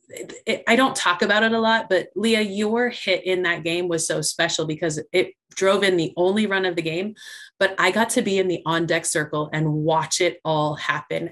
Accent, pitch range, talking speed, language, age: American, 165-195 Hz, 215 wpm, English, 30-49